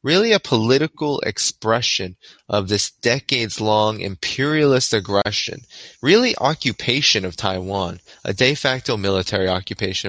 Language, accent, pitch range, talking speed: English, American, 100-135 Hz, 105 wpm